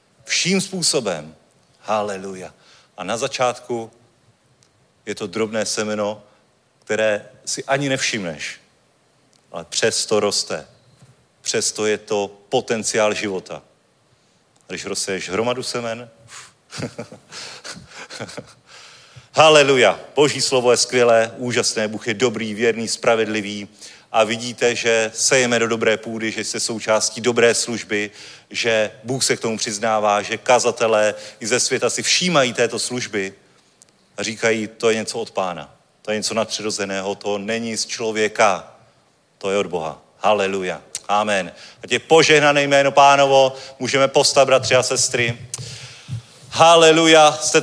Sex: male